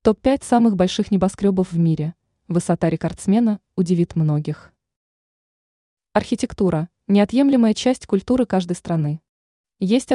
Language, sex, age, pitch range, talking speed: Russian, female, 20-39, 175-220 Hz, 100 wpm